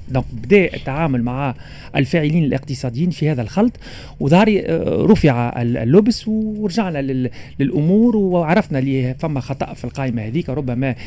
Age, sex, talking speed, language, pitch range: 40-59, male, 120 wpm, Arabic, 130-185 Hz